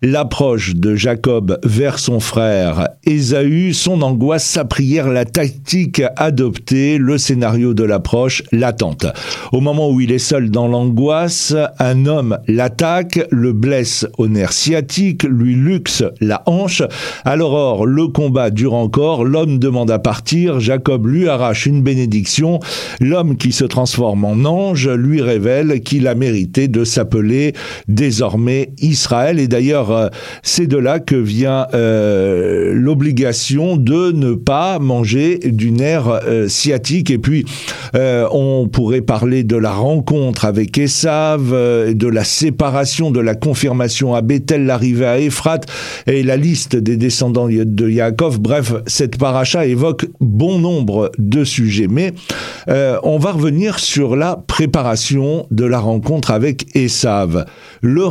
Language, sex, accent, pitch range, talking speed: French, male, French, 120-155 Hz, 140 wpm